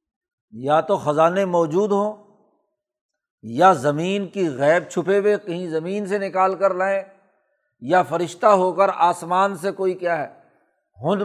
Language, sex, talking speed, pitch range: Urdu, male, 145 wpm, 155-195 Hz